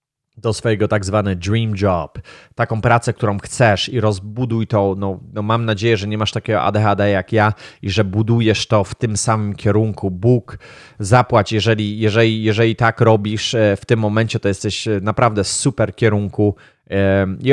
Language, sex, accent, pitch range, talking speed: Polish, male, native, 100-115 Hz, 170 wpm